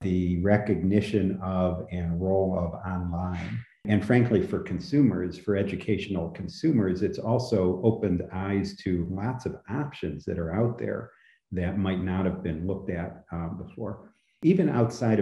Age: 50-69